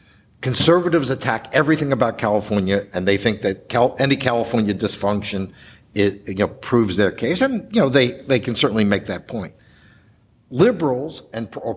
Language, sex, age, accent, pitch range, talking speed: English, male, 60-79, American, 110-150 Hz, 160 wpm